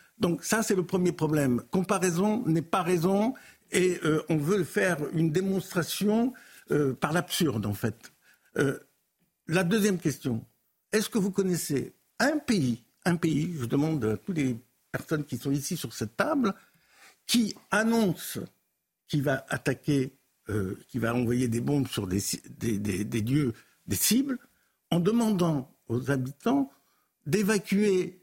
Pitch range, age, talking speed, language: 140-205 Hz, 60-79, 145 wpm, French